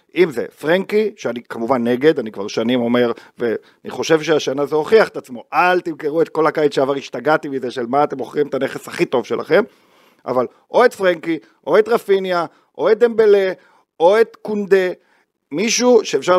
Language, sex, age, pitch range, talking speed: Hebrew, male, 40-59, 150-240 Hz, 180 wpm